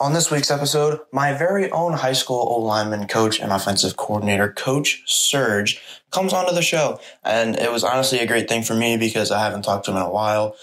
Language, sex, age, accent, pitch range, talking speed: English, male, 20-39, American, 100-115 Hz, 220 wpm